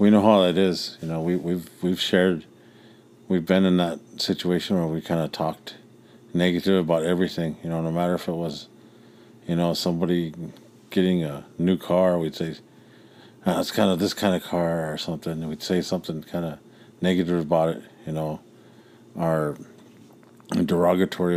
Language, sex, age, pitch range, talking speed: English, male, 40-59, 80-95 Hz, 170 wpm